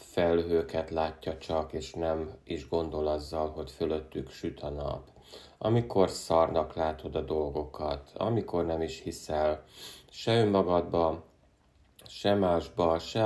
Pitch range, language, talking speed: 80-95 Hz, Hungarian, 120 wpm